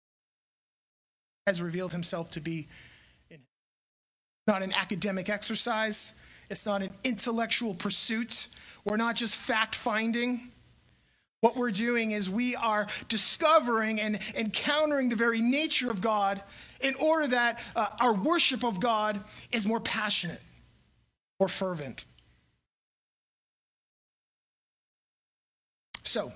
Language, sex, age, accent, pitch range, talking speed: English, male, 30-49, American, 200-255 Hz, 105 wpm